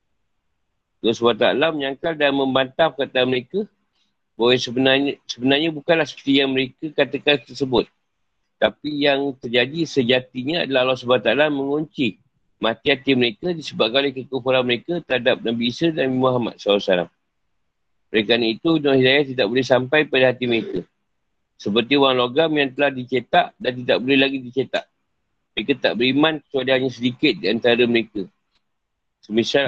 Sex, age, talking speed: male, 50-69, 140 wpm